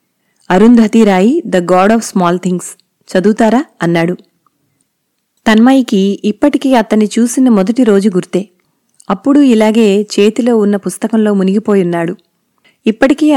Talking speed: 95 wpm